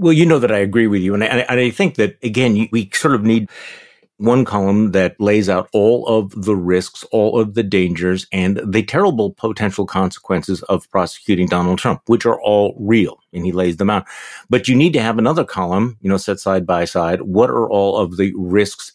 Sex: male